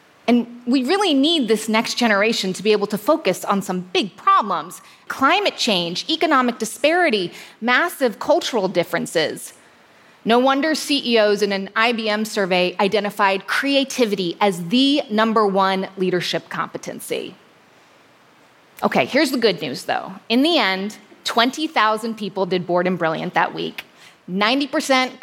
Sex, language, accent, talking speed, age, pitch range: female, English, American, 135 wpm, 20-39, 195-260 Hz